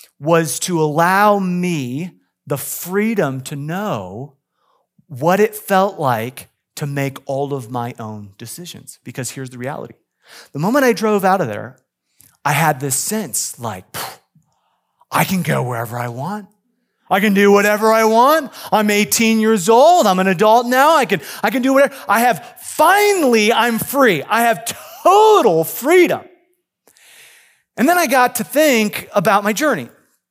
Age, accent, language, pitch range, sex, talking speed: 30-49, American, English, 140-210 Hz, male, 155 wpm